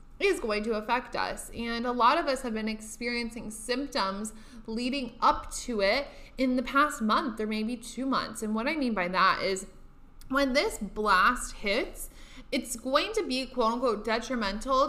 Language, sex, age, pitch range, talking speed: English, female, 20-39, 210-260 Hz, 175 wpm